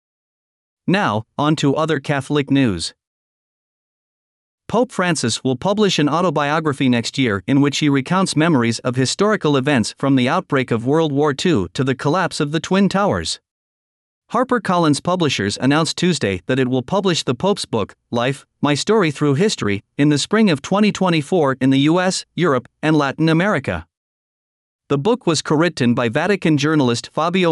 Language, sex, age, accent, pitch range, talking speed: English, male, 40-59, American, 130-170 Hz, 160 wpm